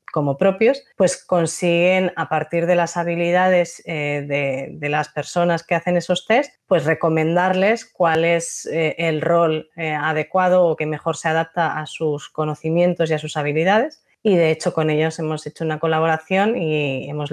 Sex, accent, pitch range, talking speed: female, Spanish, 155-180 Hz, 165 wpm